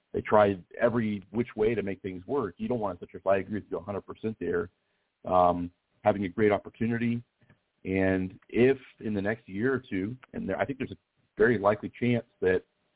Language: English